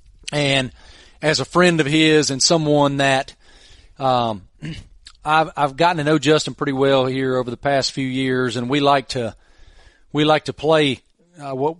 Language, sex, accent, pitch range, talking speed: English, male, American, 130-150 Hz, 175 wpm